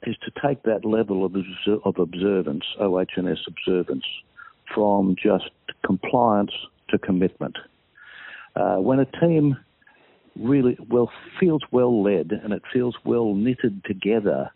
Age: 60-79